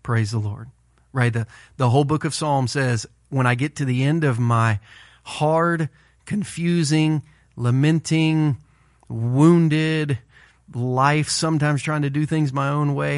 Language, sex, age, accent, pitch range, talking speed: English, male, 30-49, American, 115-140 Hz, 145 wpm